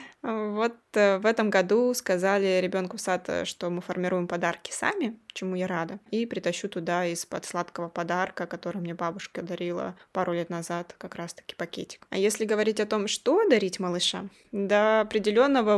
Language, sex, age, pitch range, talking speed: Russian, female, 20-39, 180-220 Hz, 165 wpm